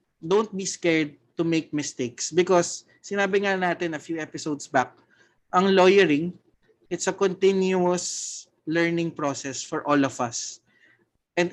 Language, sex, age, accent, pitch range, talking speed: Filipino, male, 20-39, native, 130-175 Hz, 135 wpm